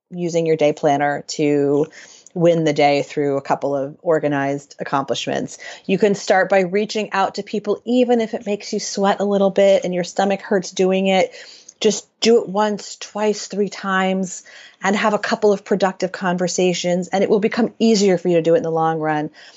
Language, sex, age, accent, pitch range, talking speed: English, female, 30-49, American, 170-205 Hz, 200 wpm